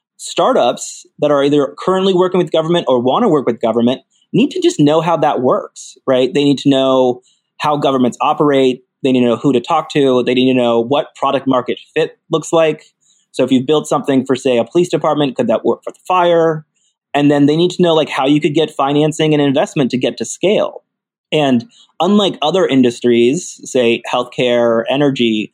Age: 30-49